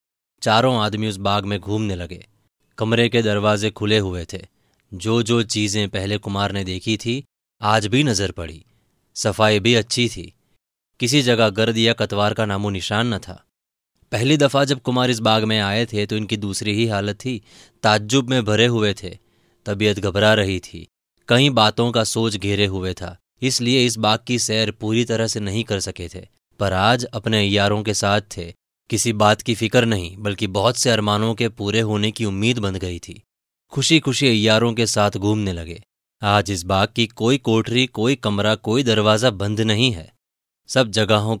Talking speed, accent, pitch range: 185 wpm, native, 100-115 Hz